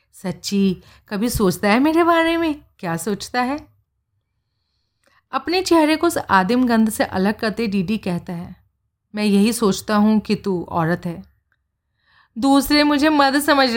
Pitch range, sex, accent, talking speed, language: 185-240 Hz, female, native, 150 wpm, Hindi